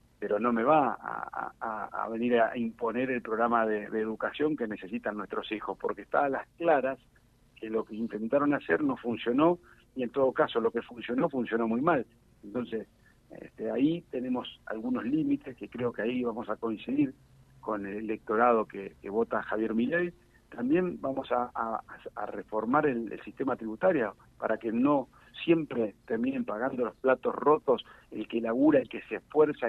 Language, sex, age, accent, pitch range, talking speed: Spanish, male, 70-89, Argentinian, 115-145 Hz, 180 wpm